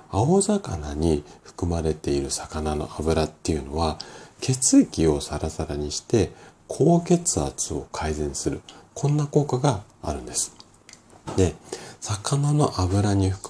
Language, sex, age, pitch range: Japanese, male, 40-59, 75-115 Hz